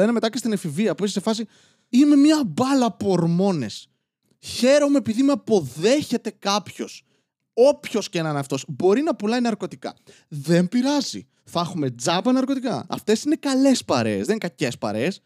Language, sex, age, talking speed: Greek, male, 20-39, 160 wpm